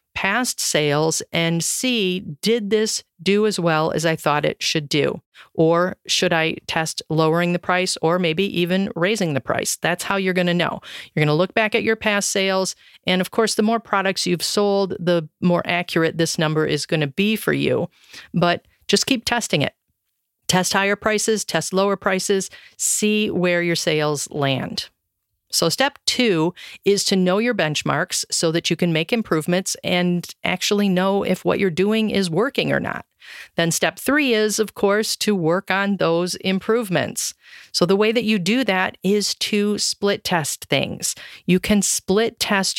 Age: 40-59